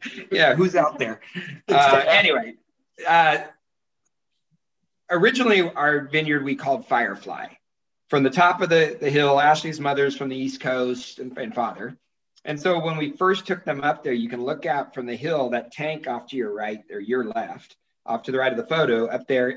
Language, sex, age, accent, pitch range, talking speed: English, male, 40-59, American, 125-155 Hz, 195 wpm